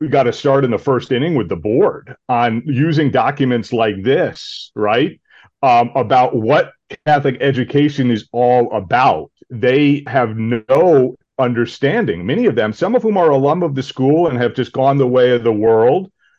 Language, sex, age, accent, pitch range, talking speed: English, male, 40-59, American, 115-140 Hz, 180 wpm